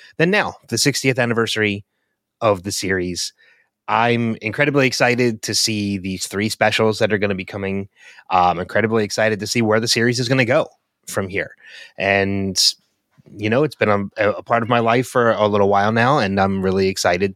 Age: 30-49